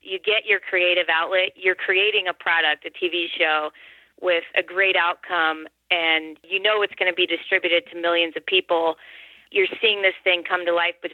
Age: 20-39